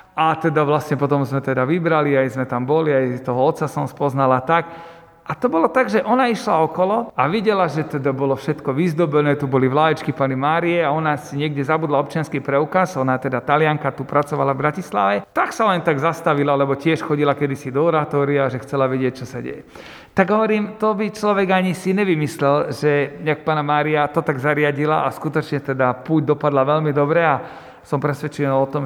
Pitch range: 135-155 Hz